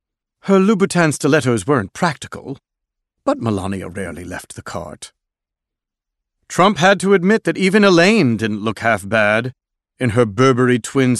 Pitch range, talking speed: 115-170 Hz, 140 wpm